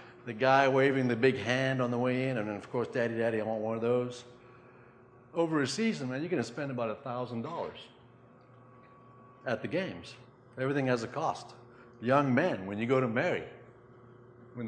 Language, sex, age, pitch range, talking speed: English, male, 60-79, 115-125 Hz, 180 wpm